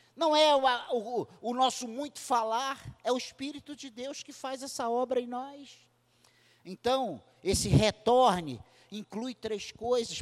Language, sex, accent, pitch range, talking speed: Portuguese, male, Brazilian, 170-255 Hz, 140 wpm